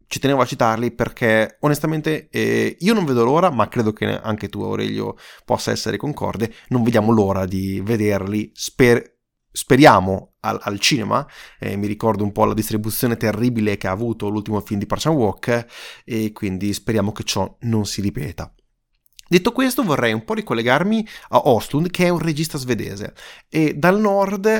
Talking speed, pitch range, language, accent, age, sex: 170 wpm, 105-160 Hz, Italian, native, 30-49, male